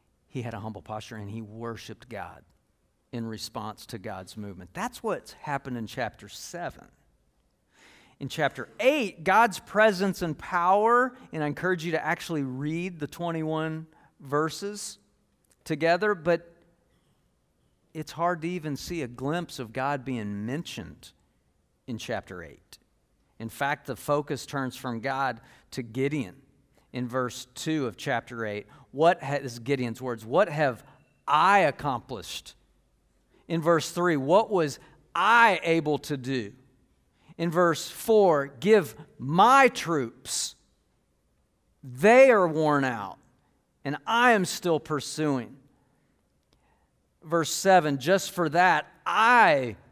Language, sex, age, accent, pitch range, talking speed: English, male, 50-69, American, 125-170 Hz, 125 wpm